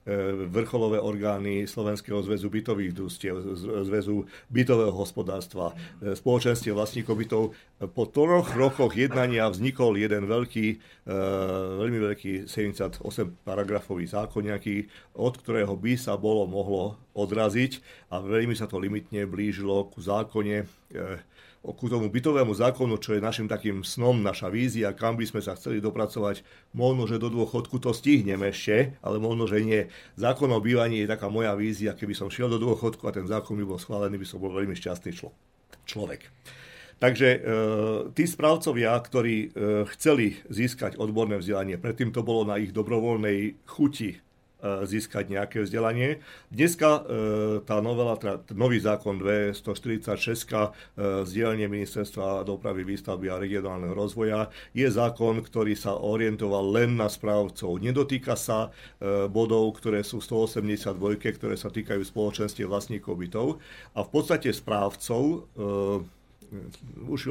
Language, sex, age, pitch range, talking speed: Slovak, male, 50-69, 100-115 Hz, 130 wpm